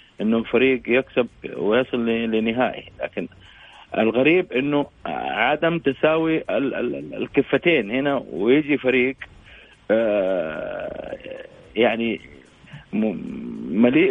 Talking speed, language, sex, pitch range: 70 wpm, Arabic, male, 120-145 Hz